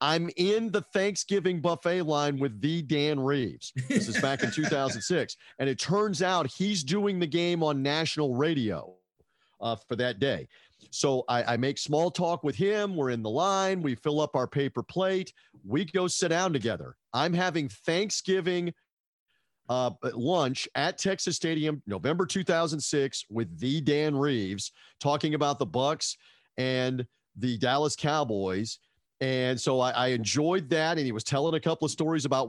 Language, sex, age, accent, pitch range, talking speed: English, male, 40-59, American, 125-160 Hz, 165 wpm